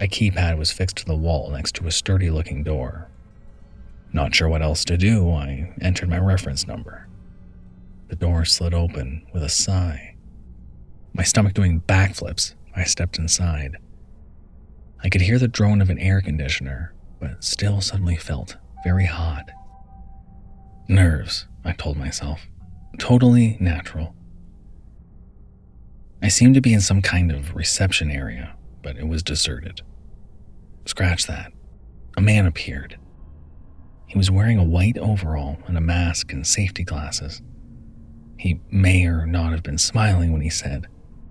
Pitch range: 80-95 Hz